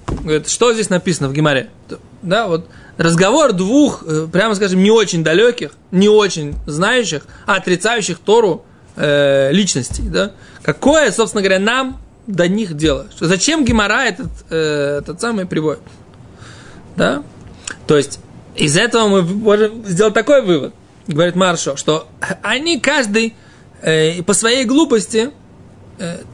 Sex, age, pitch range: male, 20-39, 165-235 Hz